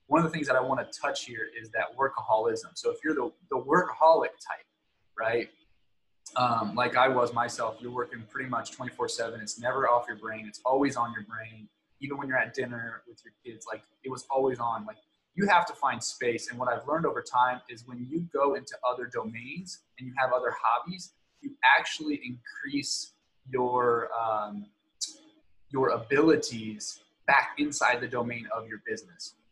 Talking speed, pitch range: 190 wpm, 120-175 Hz